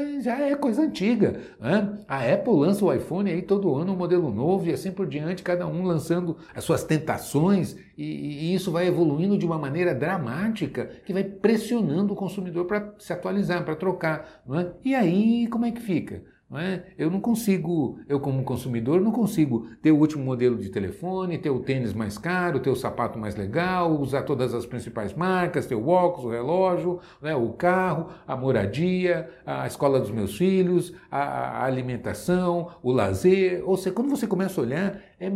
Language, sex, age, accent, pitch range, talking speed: Portuguese, male, 60-79, Brazilian, 140-190 Hz, 185 wpm